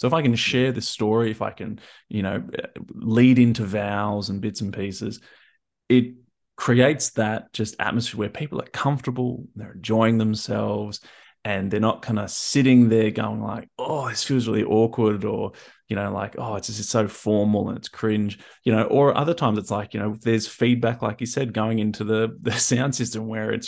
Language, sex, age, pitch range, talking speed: English, male, 20-39, 105-130 Hz, 205 wpm